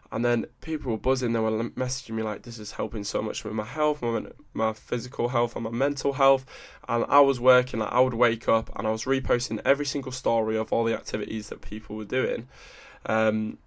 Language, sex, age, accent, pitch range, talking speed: English, male, 10-29, British, 110-125 Hz, 225 wpm